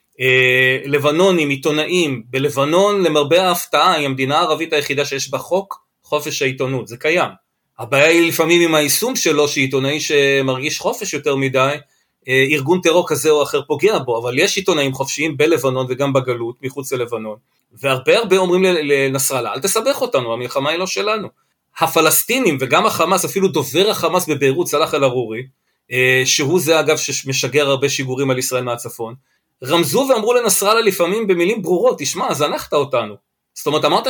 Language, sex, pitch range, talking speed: Hebrew, male, 135-175 Hz, 145 wpm